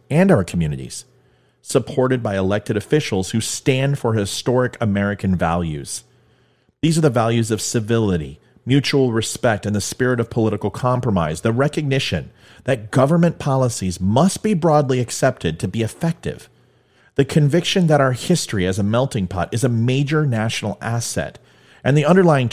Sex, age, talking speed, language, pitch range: male, 40-59, 150 wpm, English, 100-135 Hz